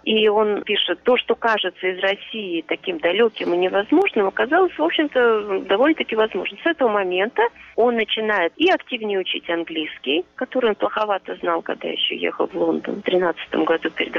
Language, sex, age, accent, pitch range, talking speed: Russian, female, 30-49, native, 180-290 Hz, 165 wpm